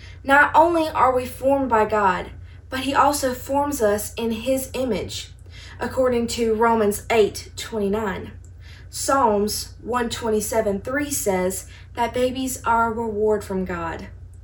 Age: 20-39